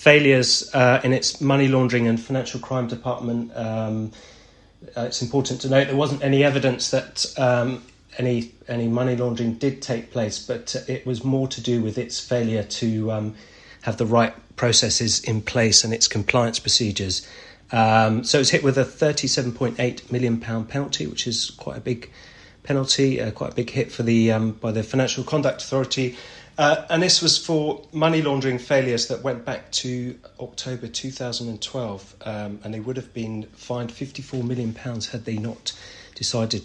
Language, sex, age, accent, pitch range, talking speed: English, male, 30-49, British, 110-130 Hz, 175 wpm